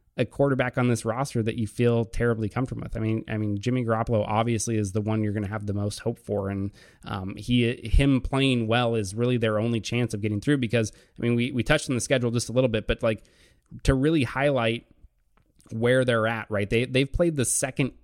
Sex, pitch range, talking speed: male, 110-130 Hz, 235 wpm